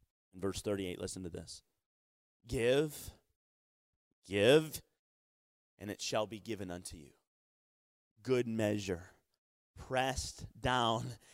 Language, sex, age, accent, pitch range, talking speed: English, male, 30-49, American, 90-125 Hz, 95 wpm